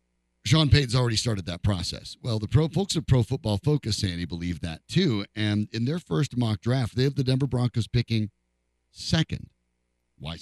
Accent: American